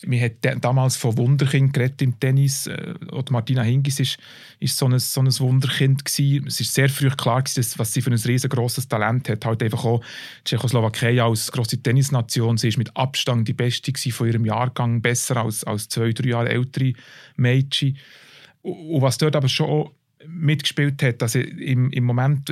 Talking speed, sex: 175 wpm, male